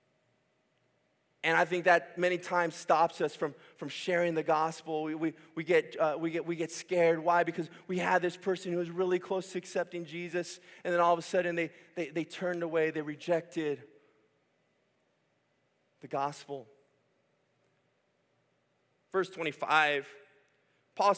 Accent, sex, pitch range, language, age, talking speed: American, male, 165-205 Hz, English, 20-39, 155 wpm